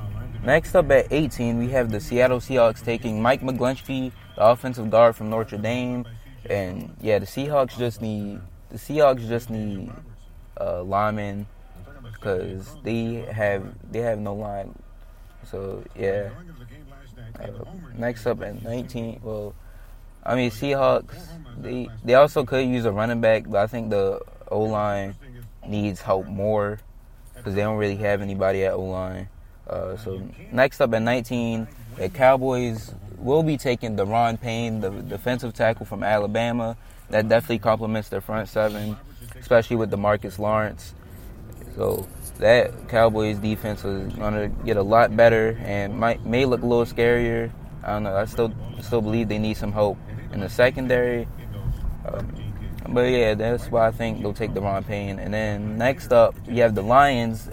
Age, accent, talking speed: 20-39, American, 165 wpm